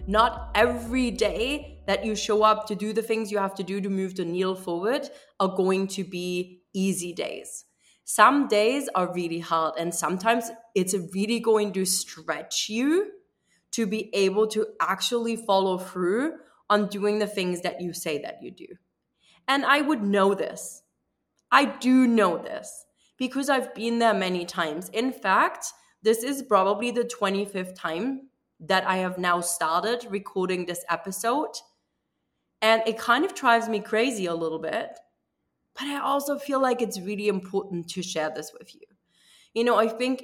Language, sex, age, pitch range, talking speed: English, female, 20-39, 185-230 Hz, 170 wpm